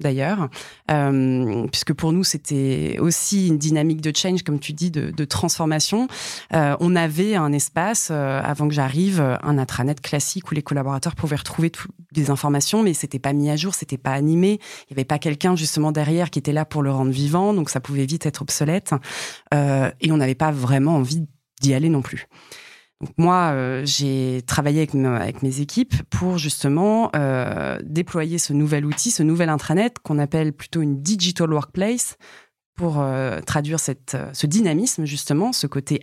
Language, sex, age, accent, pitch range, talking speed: French, female, 20-39, French, 140-175 Hz, 190 wpm